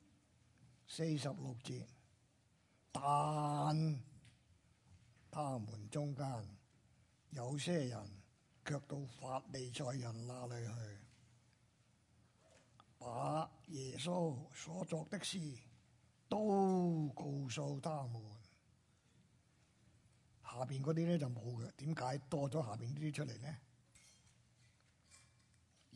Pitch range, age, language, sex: 110-145 Hz, 60-79, Chinese, male